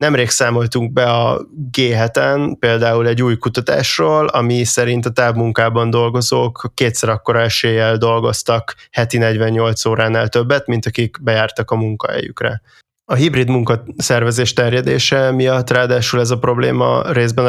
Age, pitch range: 20-39, 110-125 Hz